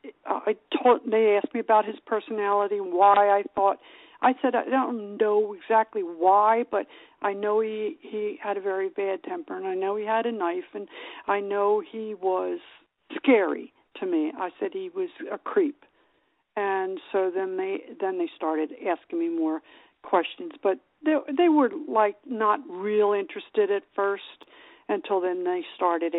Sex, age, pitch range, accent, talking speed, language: female, 60-79, 205-320 Hz, American, 170 wpm, English